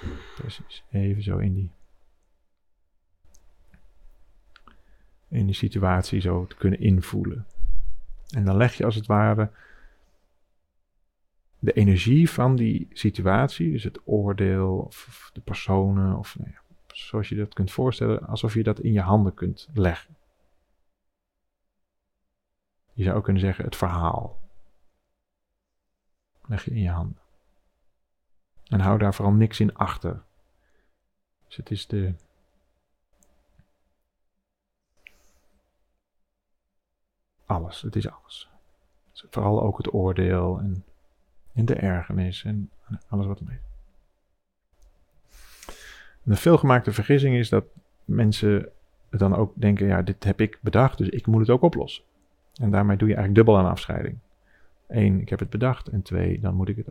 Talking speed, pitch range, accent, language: 135 wpm, 85-105 Hz, Dutch, Dutch